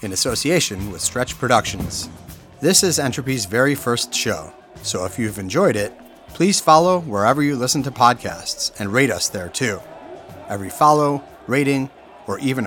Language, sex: English, male